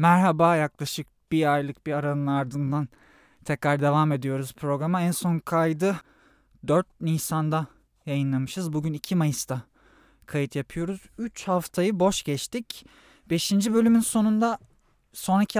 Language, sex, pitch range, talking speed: Turkish, male, 140-170 Hz, 115 wpm